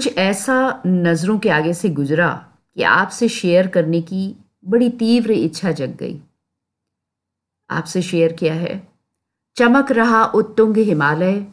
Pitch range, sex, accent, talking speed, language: 150-205 Hz, female, native, 125 wpm, Hindi